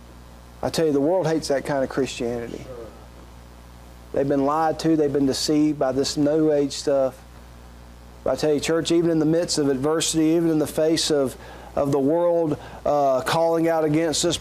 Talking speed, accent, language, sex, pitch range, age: 185 wpm, American, English, male, 155-240 Hz, 40-59